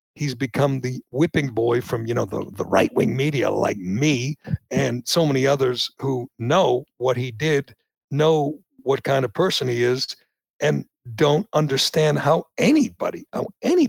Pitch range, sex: 125-155 Hz, male